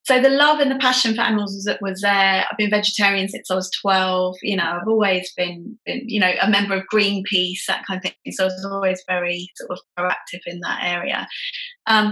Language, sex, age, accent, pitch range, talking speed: English, female, 20-39, British, 190-225 Hz, 230 wpm